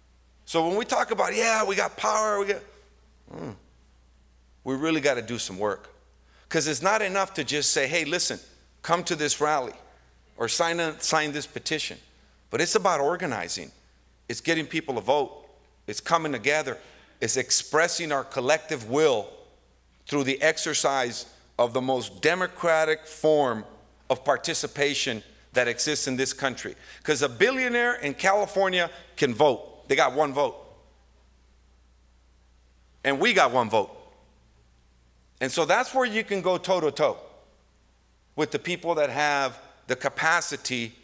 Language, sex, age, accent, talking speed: English, male, 50-69, American, 150 wpm